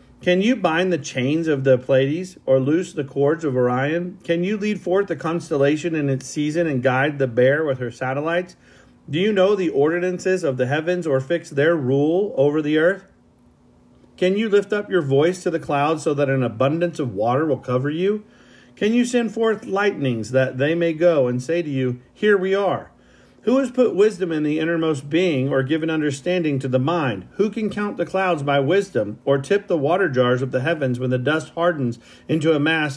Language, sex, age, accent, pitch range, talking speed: English, male, 40-59, American, 135-180 Hz, 210 wpm